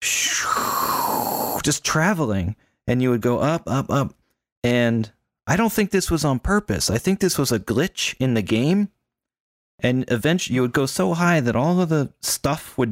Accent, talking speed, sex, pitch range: American, 180 wpm, male, 100-130 Hz